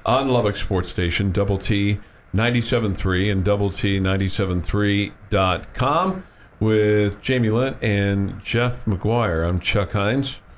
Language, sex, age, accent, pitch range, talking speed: English, male, 50-69, American, 95-110 Hz, 115 wpm